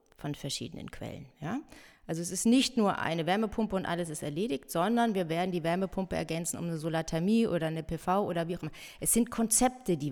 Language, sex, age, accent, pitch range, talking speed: German, female, 30-49, German, 160-210 Hz, 210 wpm